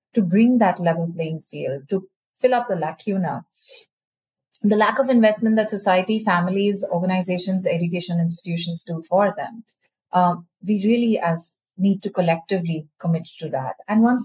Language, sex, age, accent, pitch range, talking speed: English, female, 30-49, Indian, 180-230 Hz, 150 wpm